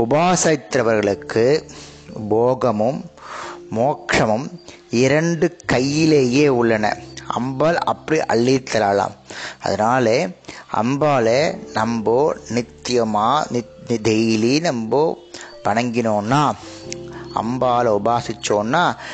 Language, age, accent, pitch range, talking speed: Tamil, 30-49, native, 110-145 Hz, 55 wpm